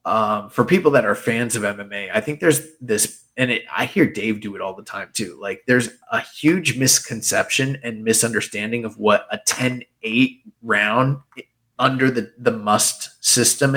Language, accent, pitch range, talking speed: English, American, 110-140 Hz, 170 wpm